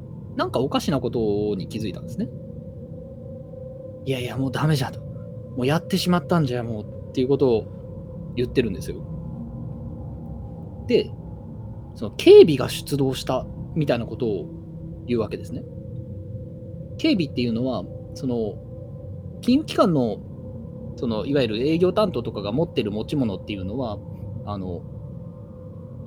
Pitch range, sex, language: 110-165 Hz, male, Japanese